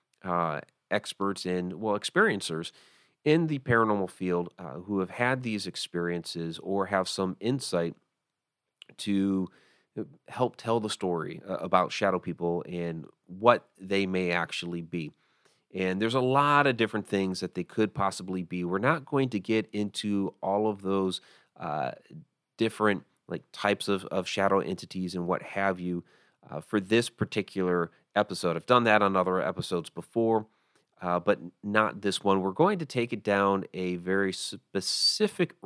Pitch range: 90-110 Hz